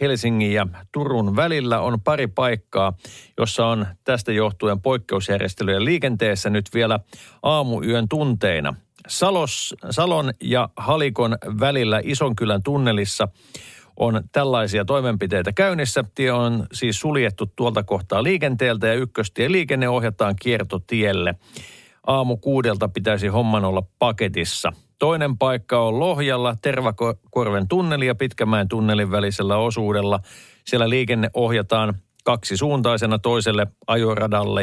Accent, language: native, Finnish